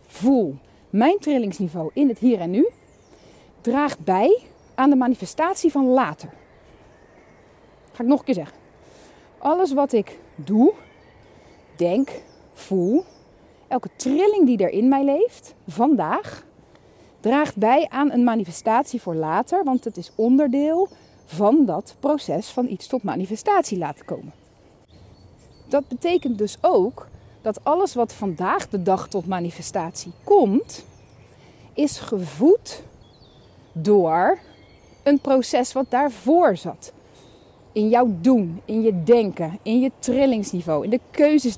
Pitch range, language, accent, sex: 195-285 Hz, Dutch, Dutch, female